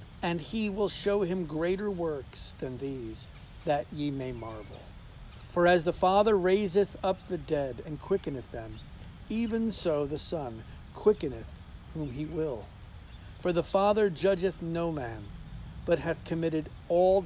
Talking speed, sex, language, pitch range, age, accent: 145 wpm, male, English, 125-185 Hz, 50-69, American